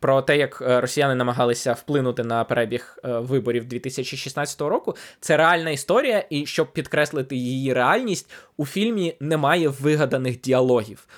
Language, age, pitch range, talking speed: Ukrainian, 20-39, 125-160 Hz, 130 wpm